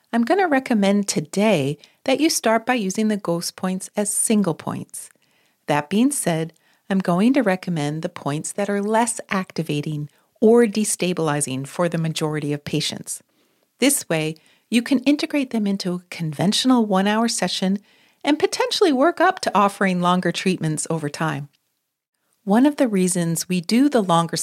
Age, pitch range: 40-59, 165-230 Hz